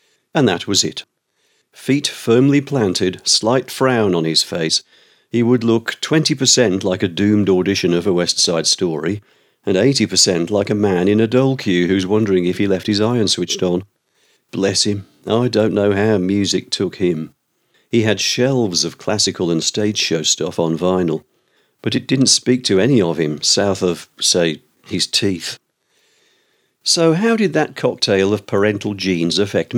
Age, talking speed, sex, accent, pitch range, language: 50-69, 180 wpm, male, British, 95-135 Hz, English